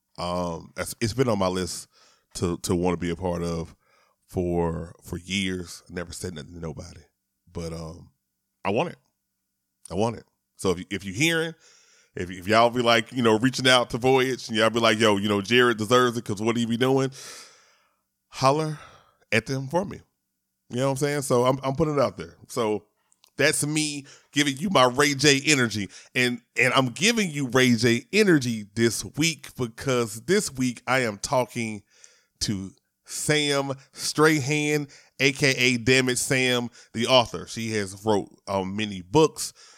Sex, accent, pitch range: male, American, 95-130 Hz